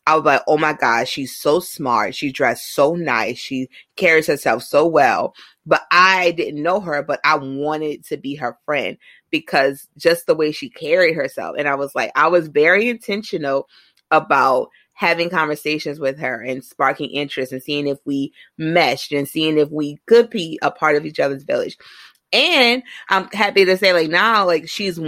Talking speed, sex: 190 wpm, female